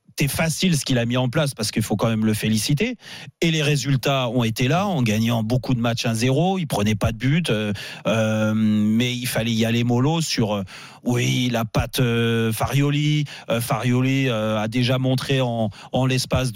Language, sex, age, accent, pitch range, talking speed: French, male, 30-49, French, 115-145 Hz, 195 wpm